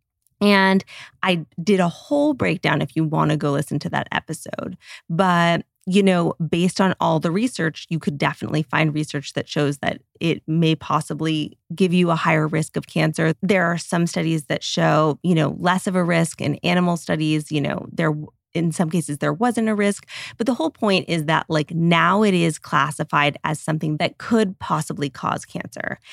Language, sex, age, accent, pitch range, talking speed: English, female, 30-49, American, 155-190 Hz, 195 wpm